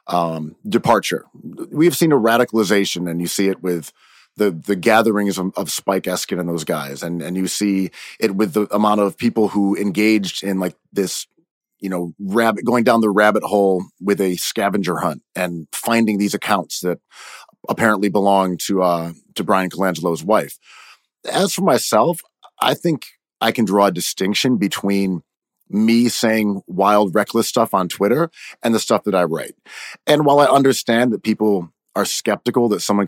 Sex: male